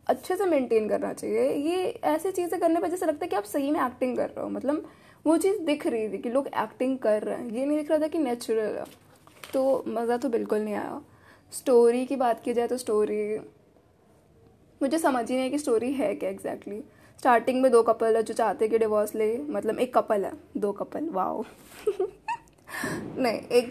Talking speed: 205 wpm